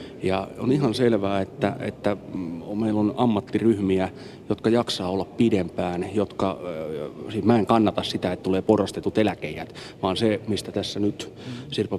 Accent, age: native, 30-49